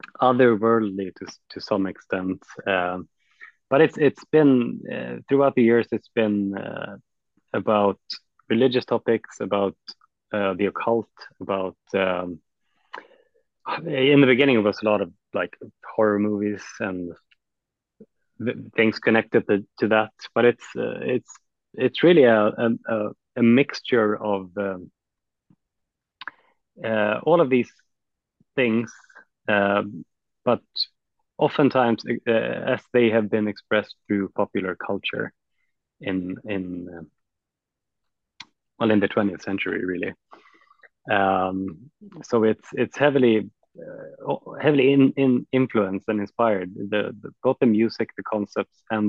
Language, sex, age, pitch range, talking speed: English, male, 30-49, 95-120 Hz, 125 wpm